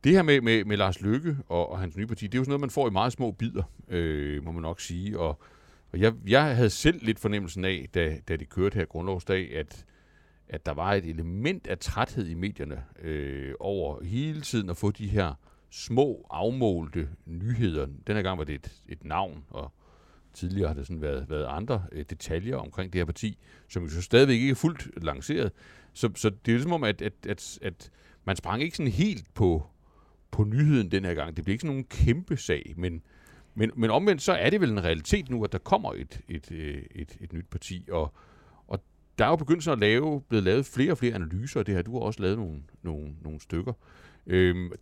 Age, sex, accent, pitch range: 60-79, male, native, 80-115 Hz